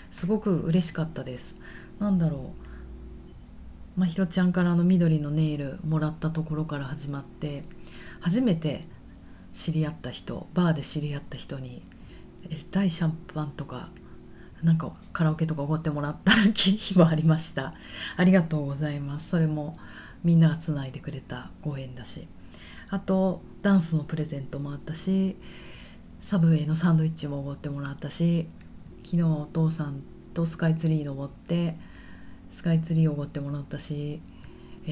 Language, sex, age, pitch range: Japanese, female, 30-49, 145-180 Hz